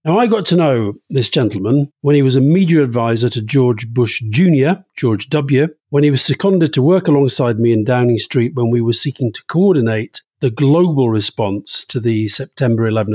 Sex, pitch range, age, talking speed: male, 115-155 Hz, 50-69, 195 wpm